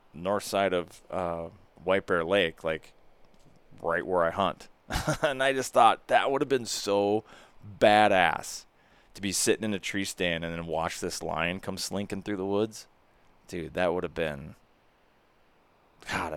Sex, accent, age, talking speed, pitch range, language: male, American, 20-39, 165 wpm, 90-105 Hz, English